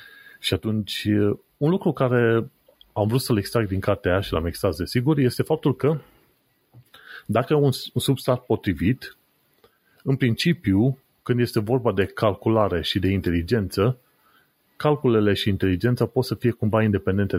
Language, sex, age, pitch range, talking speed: Romanian, male, 30-49, 100-125 Hz, 145 wpm